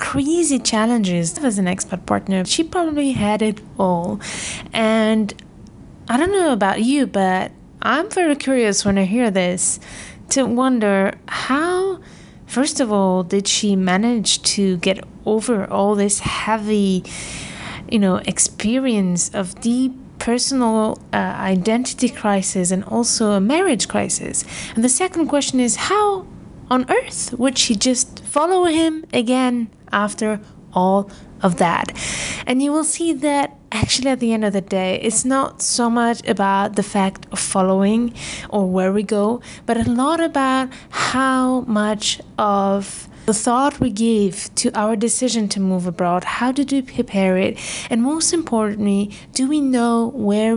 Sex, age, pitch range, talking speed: female, 20-39, 195-260 Hz, 150 wpm